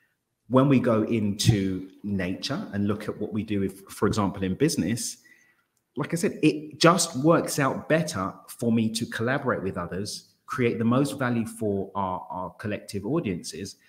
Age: 30-49